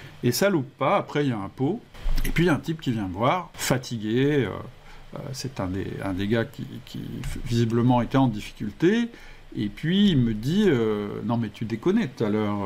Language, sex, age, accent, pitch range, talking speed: French, male, 50-69, French, 105-140 Hz, 215 wpm